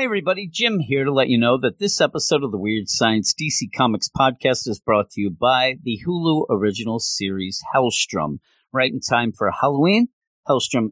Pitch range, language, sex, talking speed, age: 115-160 Hz, English, male, 185 wpm, 40-59